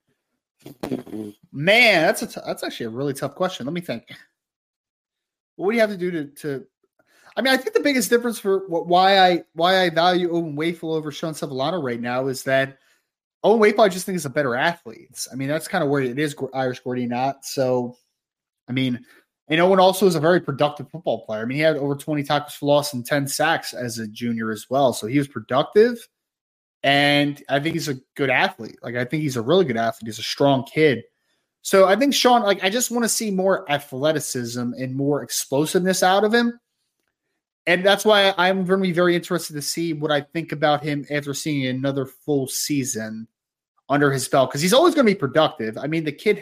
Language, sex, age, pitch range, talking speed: English, male, 20-39, 135-190 Hz, 220 wpm